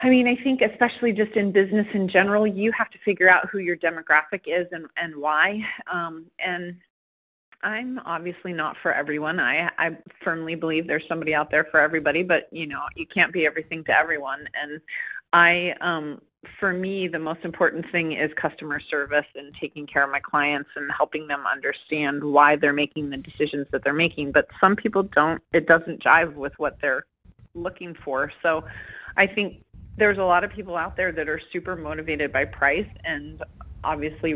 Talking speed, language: 190 wpm, English